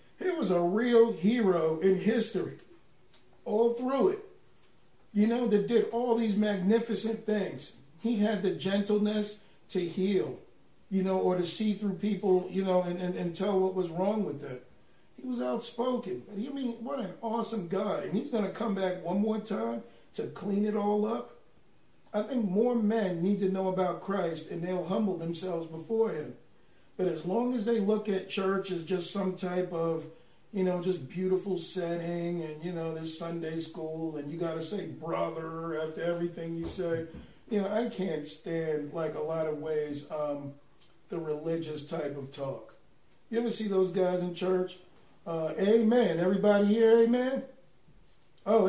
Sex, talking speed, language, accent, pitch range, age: male, 175 wpm, English, American, 170-225 Hz, 50-69